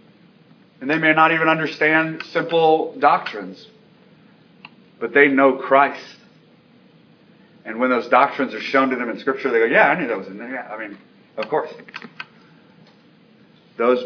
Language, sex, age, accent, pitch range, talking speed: English, male, 40-59, American, 125-175 Hz, 155 wpm